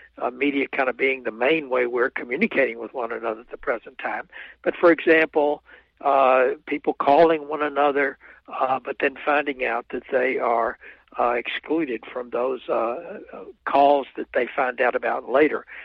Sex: male